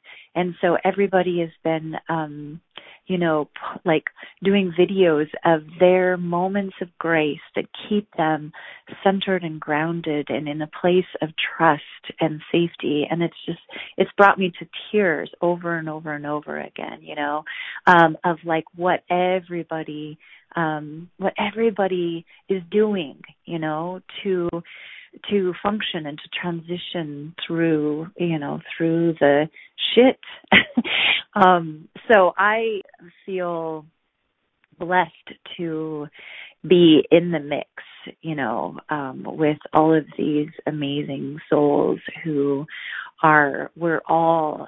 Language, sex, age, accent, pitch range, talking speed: English, female, 30-49, American, 155-185 Hz, 125 wpm